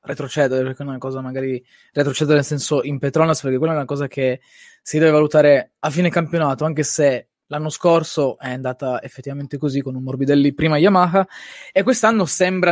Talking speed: 150 wpm